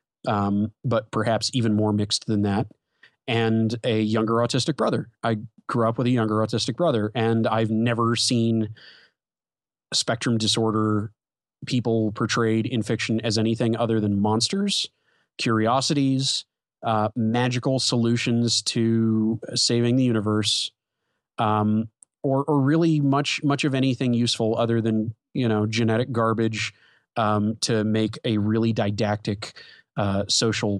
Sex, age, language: male, 30-49, English